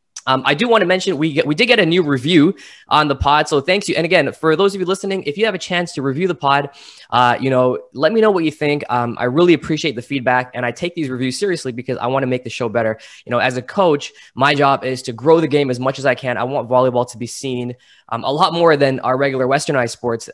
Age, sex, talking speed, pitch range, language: 20-39, male, 285 wpm, 120-155 Hz, English